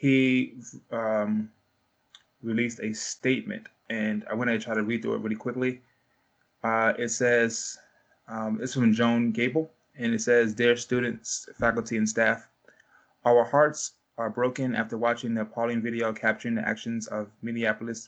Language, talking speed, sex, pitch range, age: English, 155 wpm, male, 110-120 Hz, 20-39